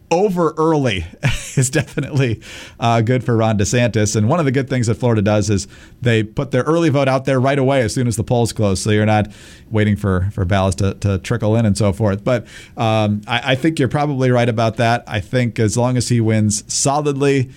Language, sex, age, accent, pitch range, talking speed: English, male, 40-59, American, 105-130 Hz, 225 wpm